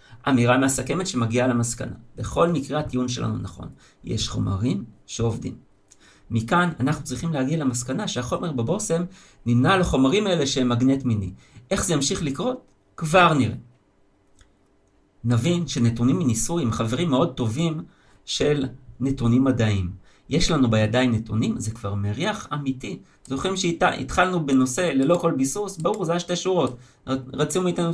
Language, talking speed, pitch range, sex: Hebrew, 130 wpm, 115-165 Hz, male